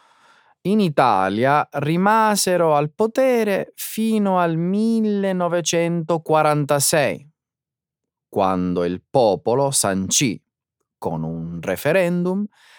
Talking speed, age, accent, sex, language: 70 wpm, 30-49, native, male, Italian